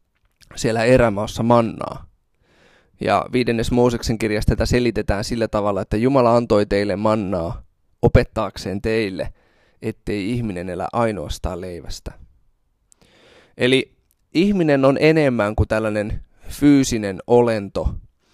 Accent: native